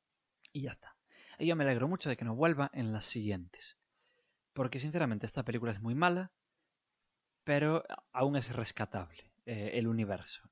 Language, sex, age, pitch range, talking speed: English, male, 20-39, 115-145 Hz, 165 wpm